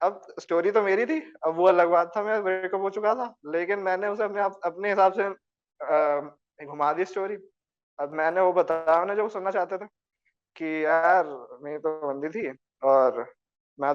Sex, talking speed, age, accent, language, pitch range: male, 170 wpm, 20-39, native, Hindi, 155-200 Hz